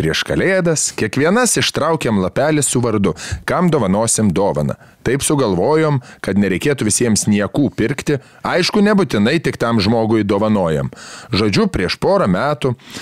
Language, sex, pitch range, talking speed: English, male, 135-190 Hz, 125 wpm